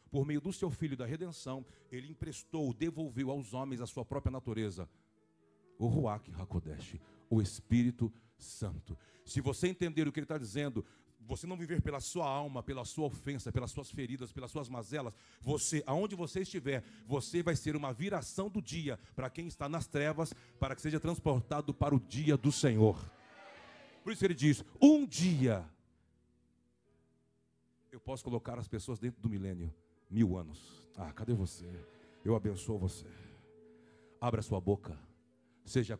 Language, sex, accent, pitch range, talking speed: Portuguese, male, Brazilian, 95-145 Hz, 165 wpm